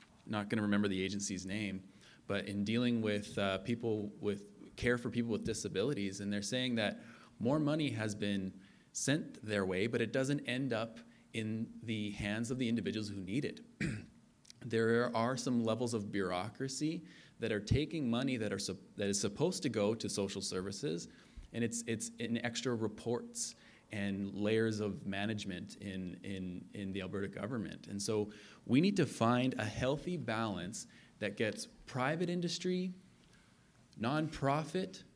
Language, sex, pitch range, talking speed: English, male, 105-135 Hz, 160 wpm